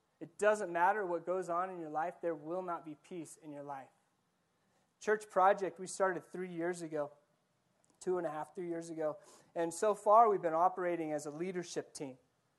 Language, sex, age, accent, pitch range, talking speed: English, male, 30-49, American, 165-205 Hz, 195 wpm